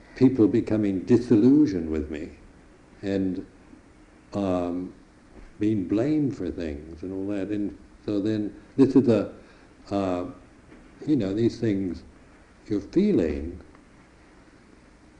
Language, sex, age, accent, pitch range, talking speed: English, male, 60-79, American, 90-115 Hz, 105 wpm